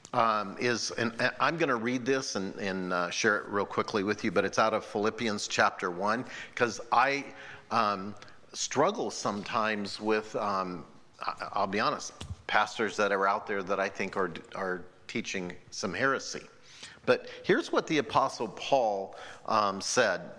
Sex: male